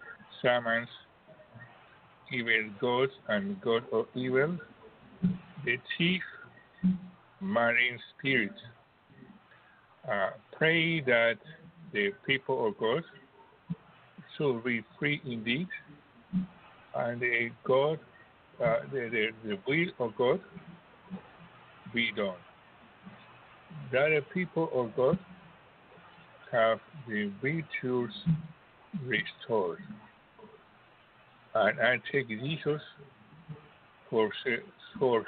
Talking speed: 85 wpm